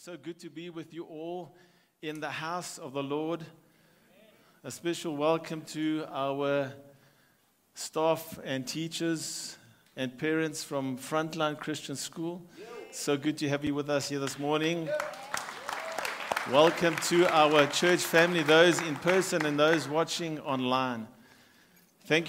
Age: 50-69